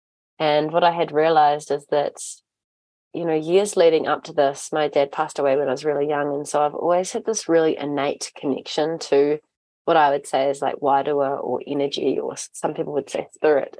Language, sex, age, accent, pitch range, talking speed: English, female, 20-39, Australian, 140-160 Hz, 210 wpm